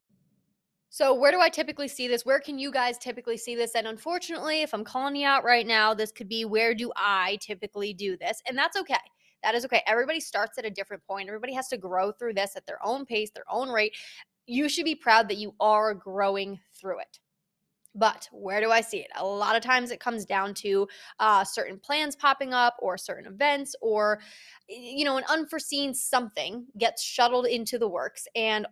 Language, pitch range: English, 205-260 Hz